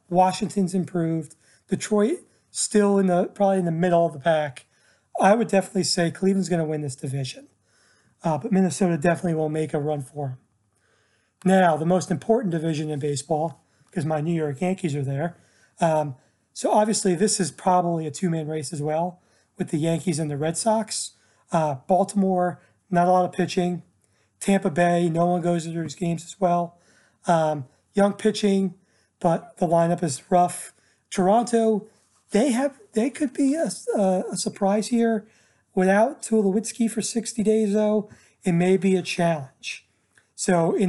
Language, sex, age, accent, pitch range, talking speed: English, male, 30-49, American, 155-195 Hz, 165 wpm